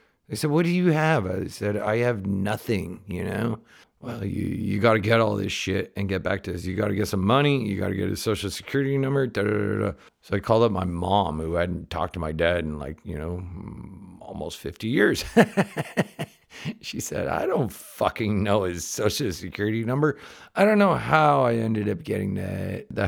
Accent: American